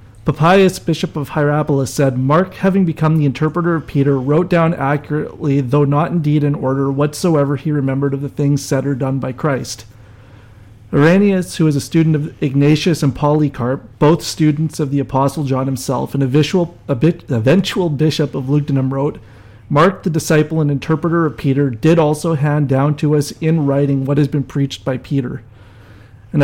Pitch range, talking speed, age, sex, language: 135-160 Hz, 180 wpm, 40-59, male, English